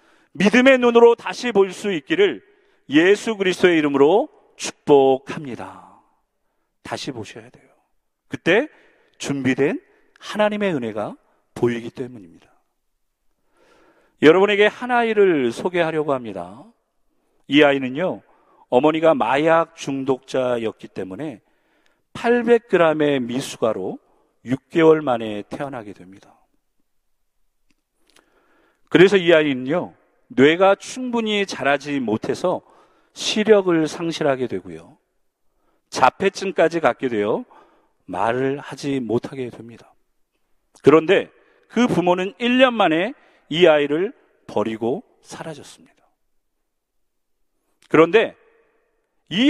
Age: 40-59